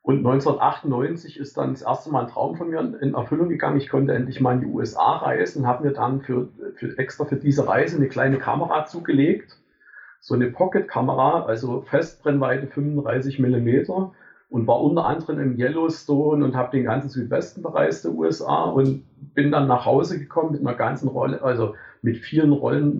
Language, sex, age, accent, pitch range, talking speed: German, male, 50-69, German, 125-145 Hz, 185 wpm